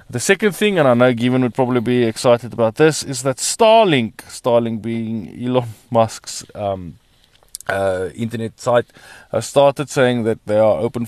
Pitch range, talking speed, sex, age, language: 105-130 Hz, 165 wpm, male, 20-39, English